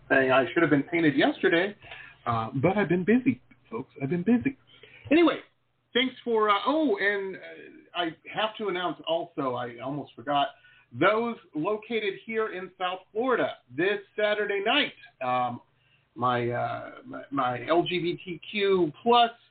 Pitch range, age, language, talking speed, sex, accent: 135-220 Hz, 50-69, English, 140 wpm, male, American